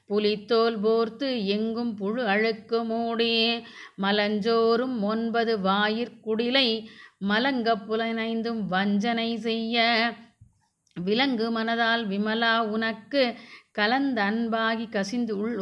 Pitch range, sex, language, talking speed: 215-230 Hz, female, Tamil, 80 wpm